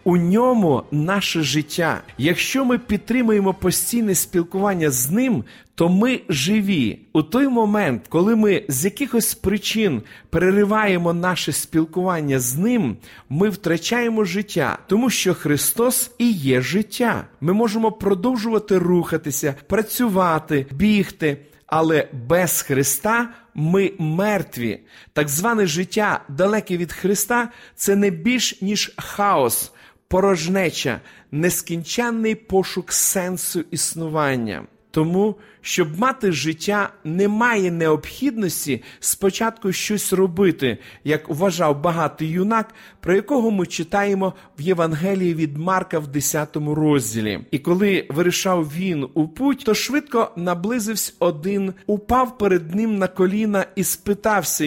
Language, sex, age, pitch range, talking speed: Ukrainian, male, 40-59, 160-215 Hz, 115 wpm